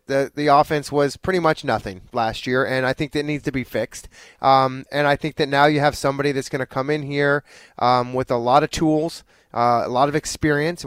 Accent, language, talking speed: American, English, 245 wpm